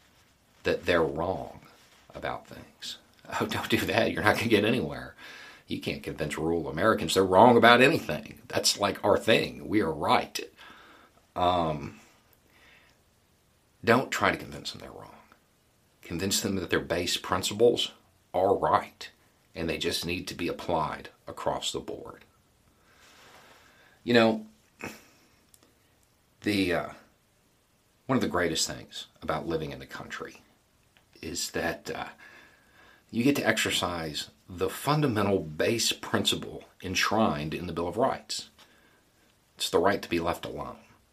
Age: 40-59